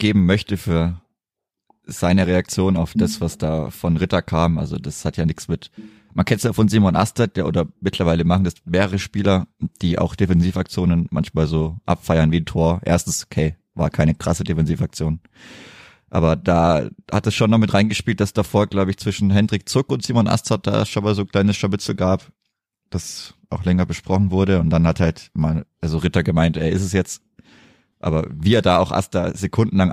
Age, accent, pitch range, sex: 30-49, German, 85-100 Hz, male